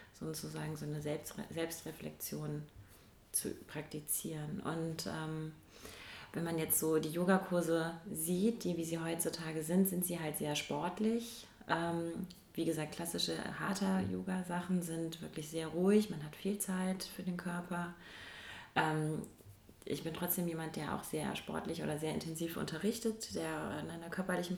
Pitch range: 155-175 Hz